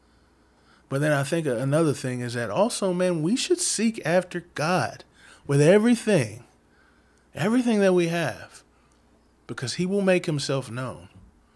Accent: American